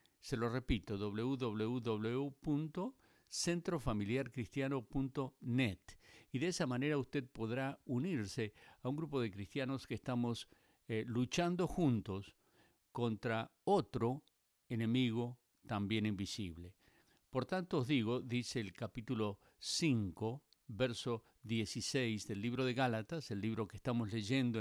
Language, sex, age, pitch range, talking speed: Spanish, male, 50-69, 110-135 Hz, 110 wpm